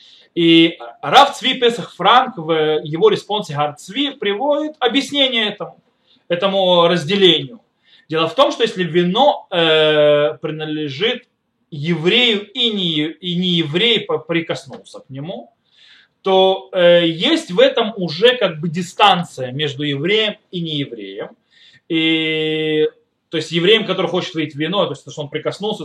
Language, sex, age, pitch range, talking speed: Russian, male, 20-39, 160-225 Hz, 130 wpm